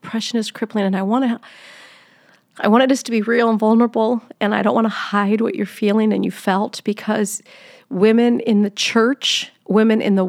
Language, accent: English, American